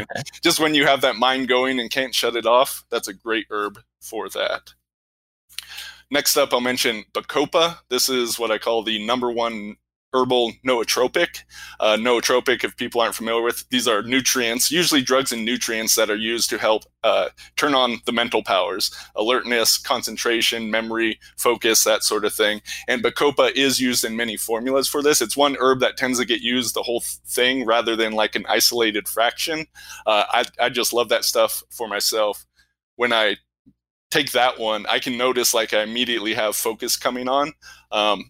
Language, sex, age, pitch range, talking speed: English, male, 20-39, 110-130 Hz, 185 wpm